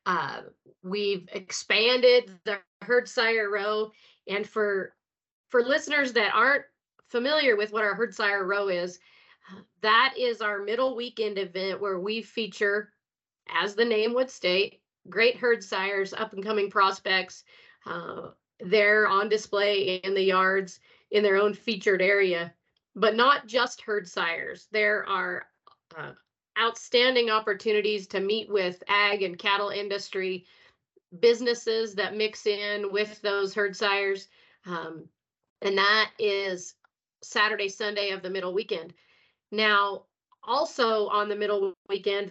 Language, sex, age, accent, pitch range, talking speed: English, female, 40-59, American, 195-230 Hz, 135 wpm